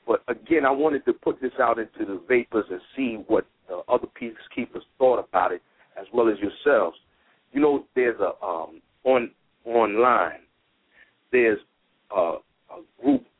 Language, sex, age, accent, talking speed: English, male, 50-69, American, 155 wpm